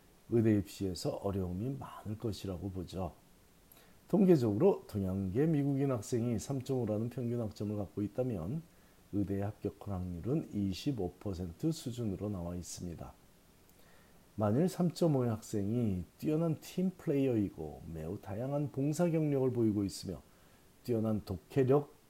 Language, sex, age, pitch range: Korean, male, 40-59, 100-140 Hz